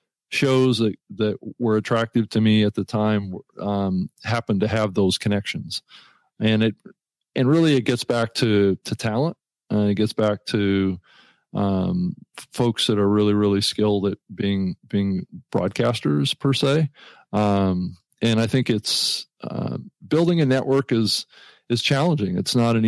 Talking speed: 155 wpm